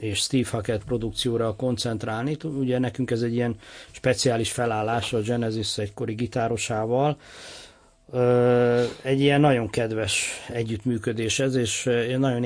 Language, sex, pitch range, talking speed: Hungarian, male, 115-125 Hz, 115 wpm